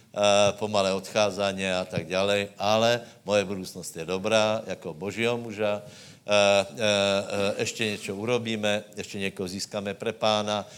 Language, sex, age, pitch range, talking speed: Slovak, male, 60-79, 95-115 Hz, 145 wpm